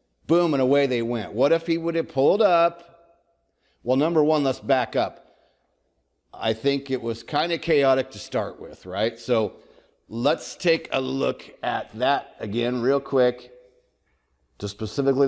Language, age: English, 50-69